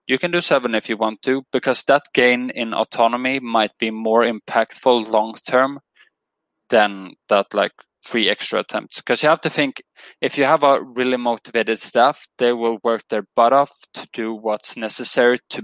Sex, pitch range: male, 110-130 Hz